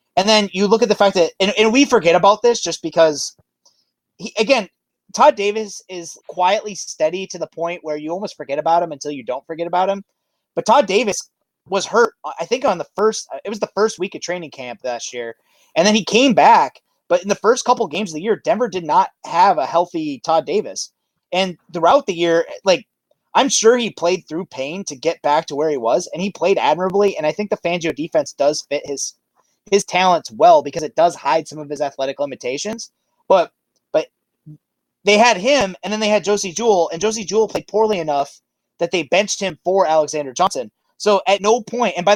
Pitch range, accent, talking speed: 165-215 Hz, American, 220 wpm